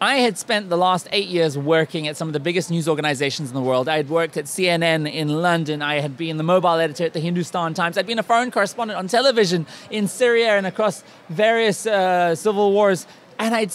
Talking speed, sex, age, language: 225 wpm, male, 30-49, Dutch